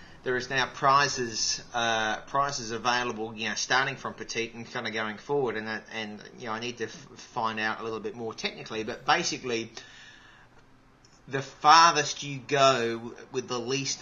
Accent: Australian